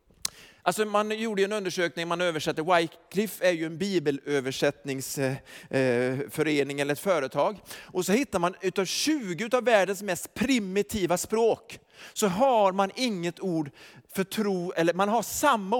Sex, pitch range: male, 195-270 Hz